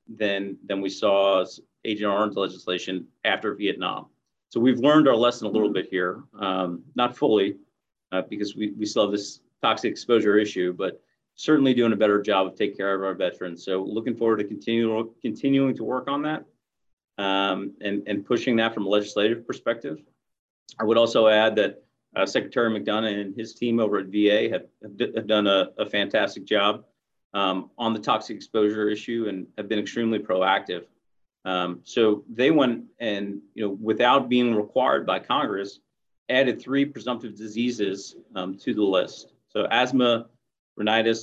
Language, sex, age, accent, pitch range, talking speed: English, male, 30-49, American, 100-115 Hz, 170 wpm